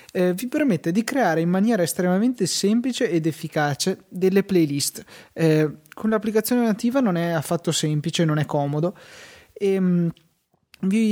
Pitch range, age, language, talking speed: 150-180 Hz, 20-39, Italian, 135 wpm